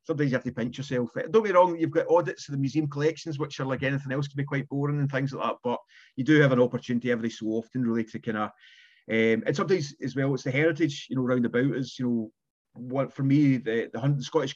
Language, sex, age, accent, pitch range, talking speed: English, male, 30-49, British, 120-140 Hz, 255 wpm